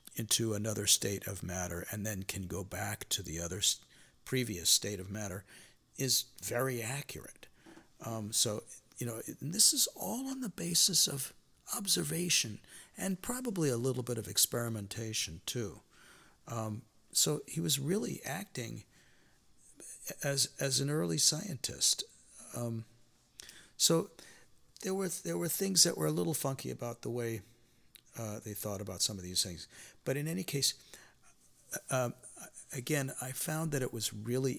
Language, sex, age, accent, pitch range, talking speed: English, male, 50-69, American, 100-135 Hz, 150 wpm